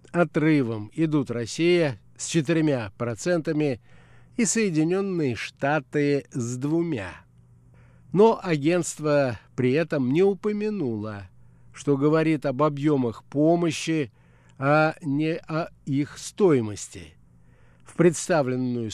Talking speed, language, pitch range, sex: 90 wpm, Russian, 120-165 Hz, male